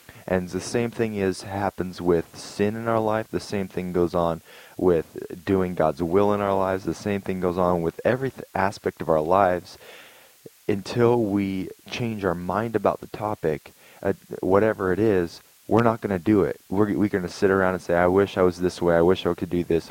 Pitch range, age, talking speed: 85-100 Hz, 20-39, 215 wpm